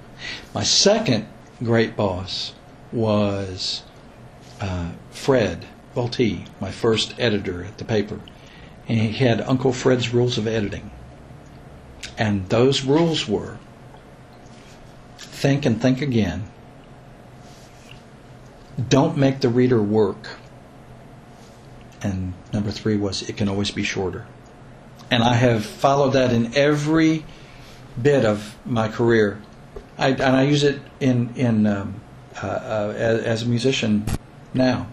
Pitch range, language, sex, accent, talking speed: 105-135 Hz, English, male, American, 120 wpm